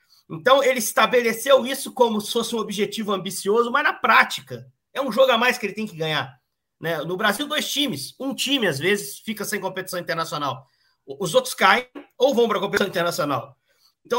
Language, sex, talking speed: Portuguese, male, 195 wpm